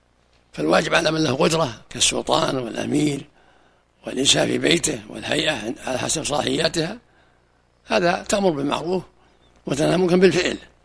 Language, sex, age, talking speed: Arabic, male, 60-79, 105 wpm